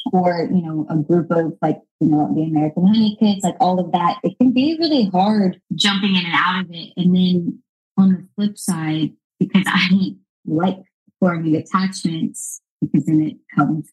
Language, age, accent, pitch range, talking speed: English, 20-39, American, 170-205 Hz, 190 wpm